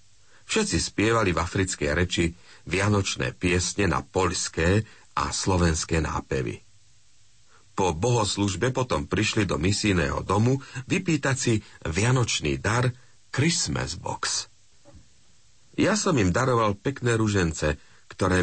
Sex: male